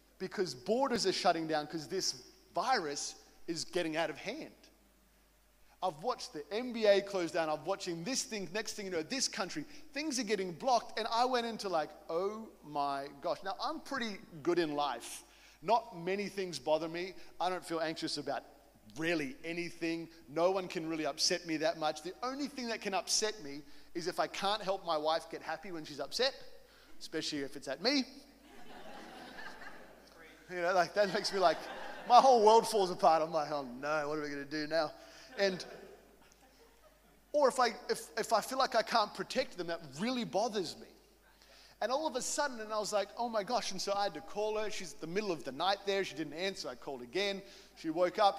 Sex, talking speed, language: male, 205 wpm, English